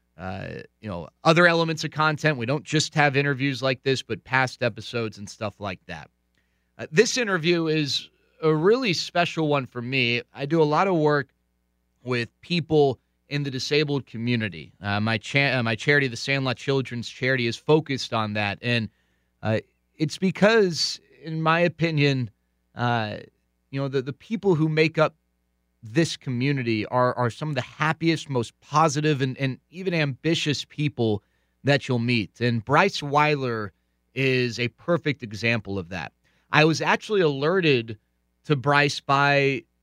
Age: 30-49